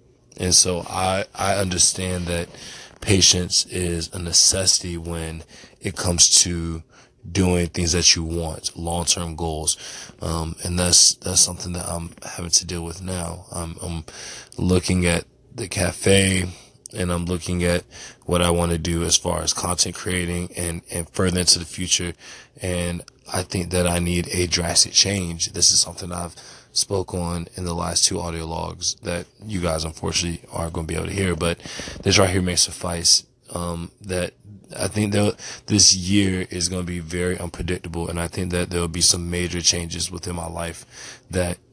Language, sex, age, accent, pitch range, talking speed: English, male, 20-39, American, 85-95 Hz, 180 wpm